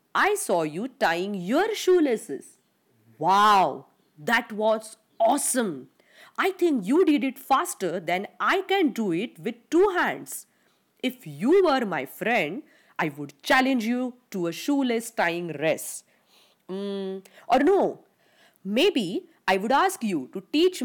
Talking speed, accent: 140 wpm, Indian